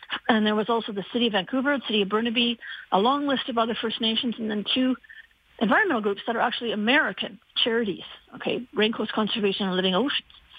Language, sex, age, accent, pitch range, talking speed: English, female, 50-69, American, 220-265 Hz, 200 wpm